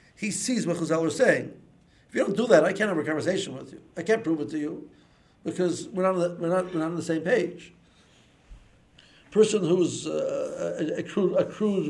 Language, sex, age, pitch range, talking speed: English, male, 60-79, 160-205 Hz, 230 wpm